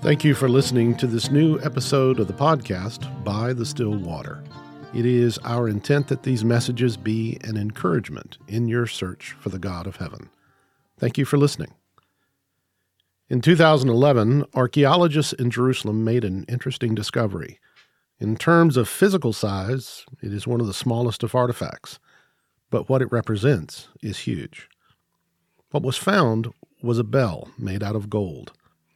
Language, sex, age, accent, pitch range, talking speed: English, male, 50-69, American, 110-140 Hz, 155 wpm